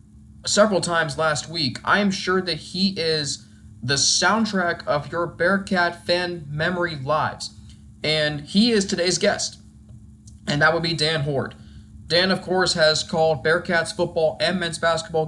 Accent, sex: American, male